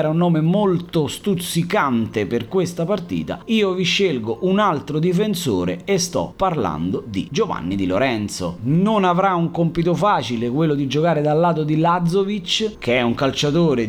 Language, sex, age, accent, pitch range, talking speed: Italian, male, 30-49, native, 140-185 Hz, 160 wpm